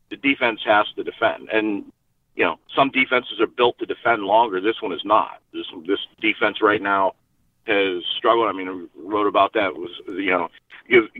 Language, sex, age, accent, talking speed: English, male, 40-59, American, 195 wpm